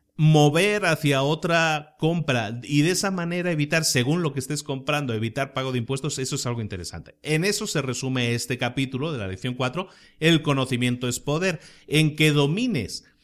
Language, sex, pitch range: Spanish, male, 130-165 Hz